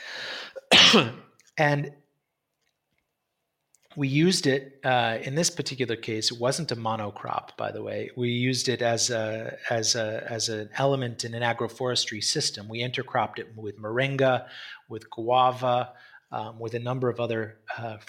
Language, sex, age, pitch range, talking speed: English, male, 30-49, 120-150 Hz, 145 wpm